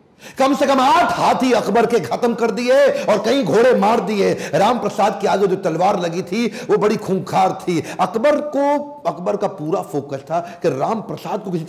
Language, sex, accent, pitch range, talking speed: Hindi, male, native, 170-225 Hz, 200 wpm